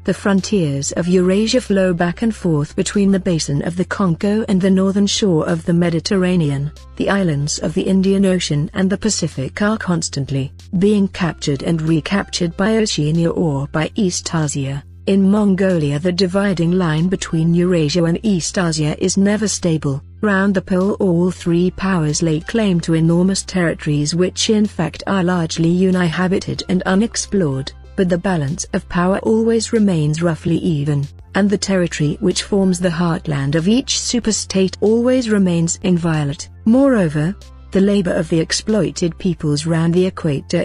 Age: 50-69